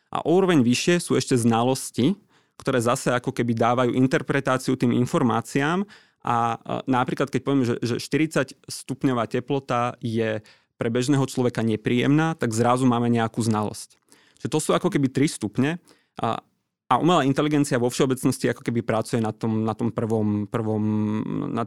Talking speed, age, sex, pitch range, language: 145 wpm, 30-49, male, 115-135 Hz, Slovak